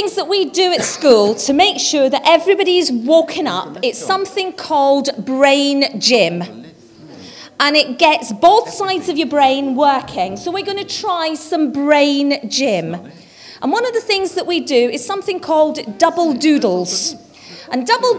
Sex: female